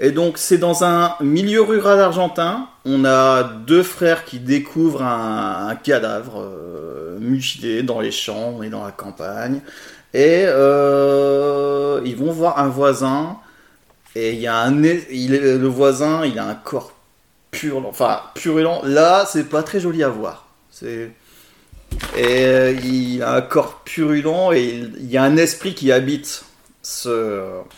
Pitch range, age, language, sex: 120-160 Hz, 30-49, French, male